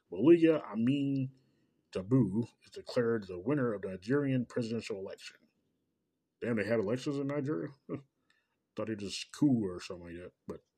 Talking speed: 150 wpm